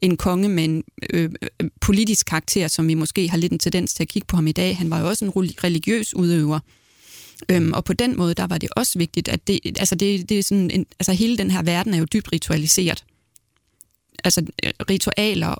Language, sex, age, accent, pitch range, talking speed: Danish, female, 30-49, native, 165-195 Hz, 220 wpm